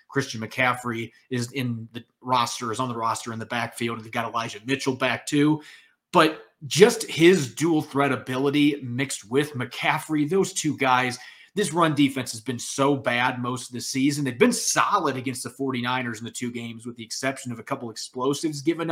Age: 30-49